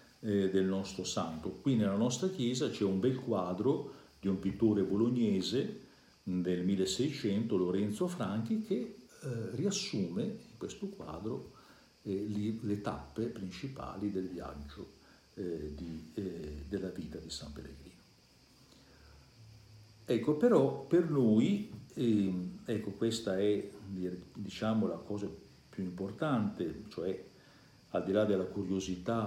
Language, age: Italian, 50-69